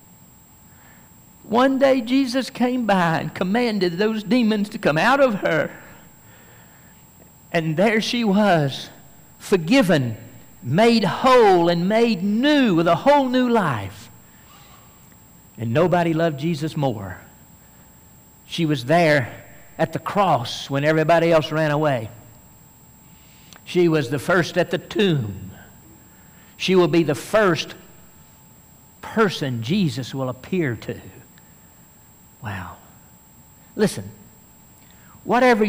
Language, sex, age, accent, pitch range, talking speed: English, male, 60-79, American, 145-230 Hz, 110 wpm